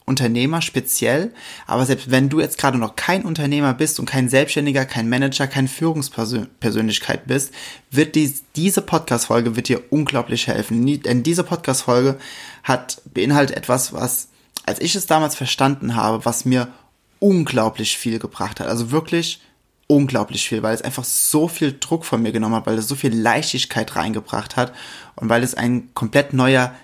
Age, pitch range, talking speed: 20-39, 125-155 Hz, 160 wpm